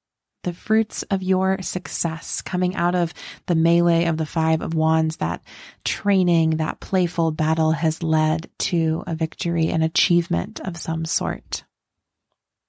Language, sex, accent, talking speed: English, female, American, 140 wpm